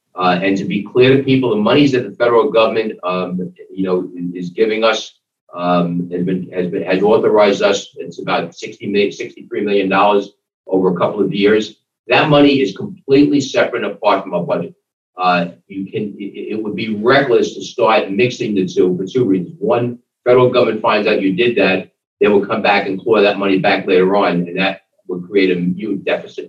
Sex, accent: male, American